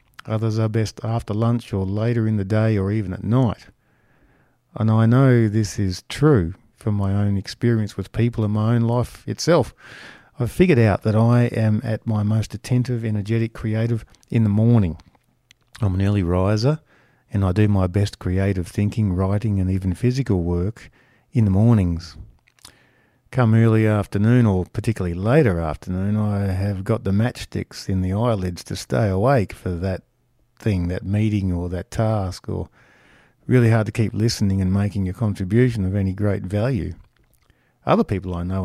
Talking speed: 170 wpm